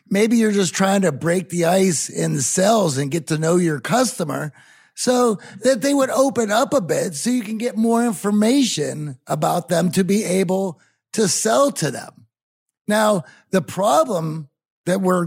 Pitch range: 155-220 Hz